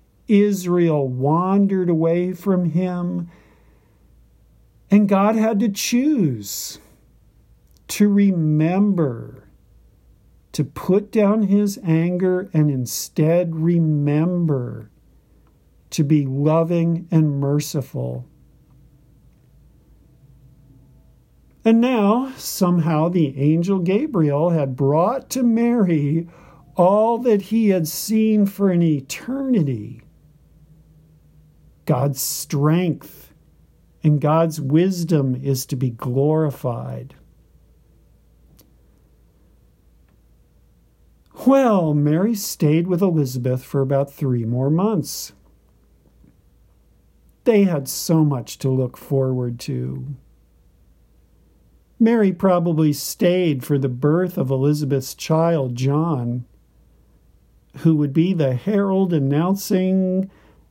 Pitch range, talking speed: 135-185 Hz, 85 wpm